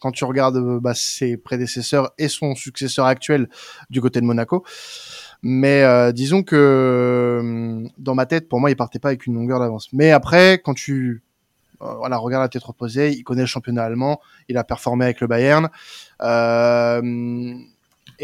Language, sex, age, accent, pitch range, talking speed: French, male, 20-39, French, 120-155 Hz, 170 wpm